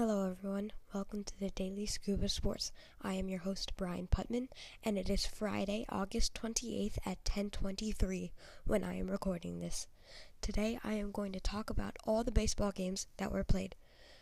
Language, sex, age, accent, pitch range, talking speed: English, female, 20-39, American, 190-210 Hz, 175 wpm